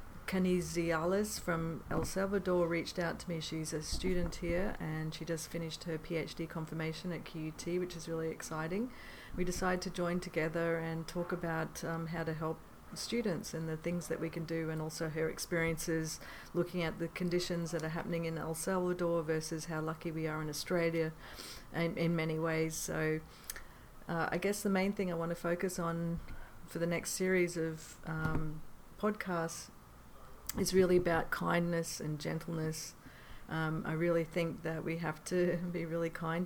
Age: 40-59